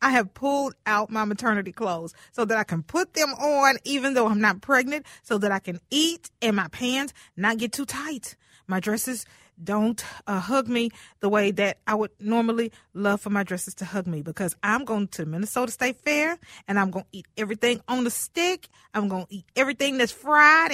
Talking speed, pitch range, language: 210 wpm, 205-275 Hz, English